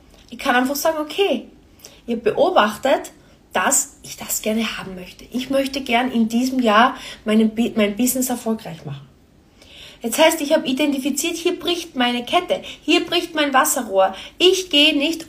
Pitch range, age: 215-280 Hz, 20-39